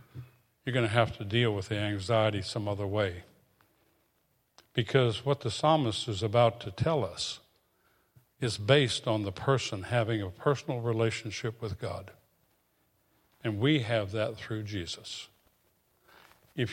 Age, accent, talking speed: 60-79, American, 140 wpm